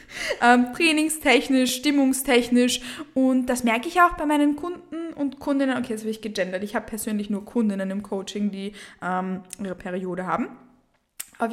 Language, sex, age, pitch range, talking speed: German, female, 20-39, 210-260 Hz, 165 wpm